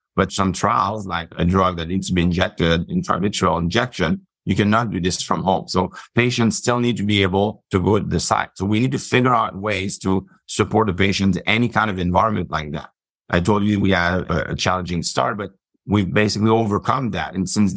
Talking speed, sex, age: 215 wpm, male, 50-69